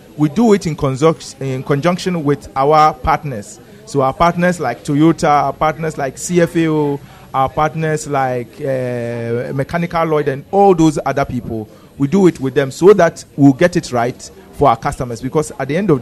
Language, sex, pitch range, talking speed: English, male, 130-165 Hz, 180 wpm